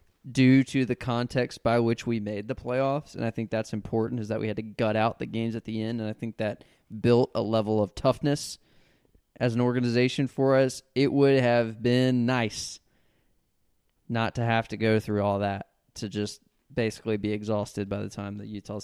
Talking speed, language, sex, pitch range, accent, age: 205 wpm, English, male, 105-120 Hz, American, 20-39